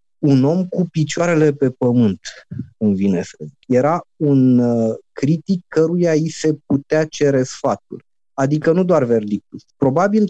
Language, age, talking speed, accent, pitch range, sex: Romanian, 20-39, 140 wpm, native, 115-155 Hz, male